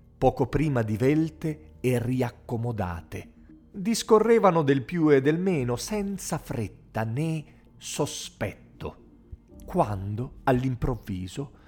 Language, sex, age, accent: Italian, male, 40-59, native